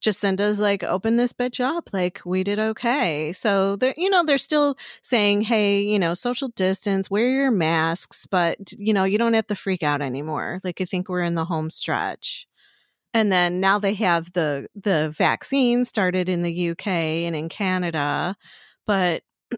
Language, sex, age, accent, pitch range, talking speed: English, female, 30-49, American, 175-220 Hz, 180 wpm